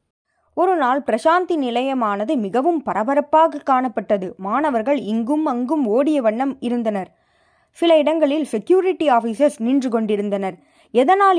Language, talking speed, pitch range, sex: Tamil, 100 wpm, 225-315 Hz, female